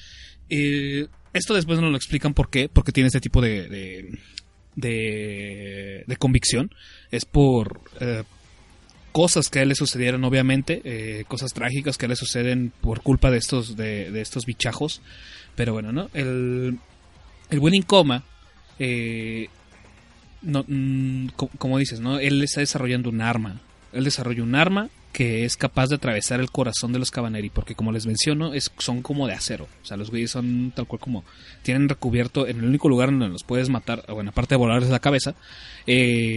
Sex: male